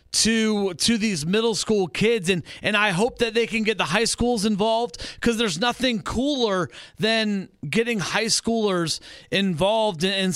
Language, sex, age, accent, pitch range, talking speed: English, male, 30-49, American, 160-205 Hz, 160 wpm